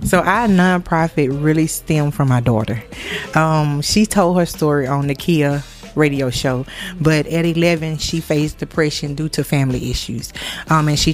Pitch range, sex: 140-170 Hz, female